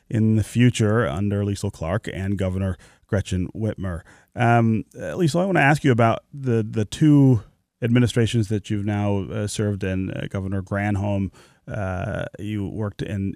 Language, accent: English, American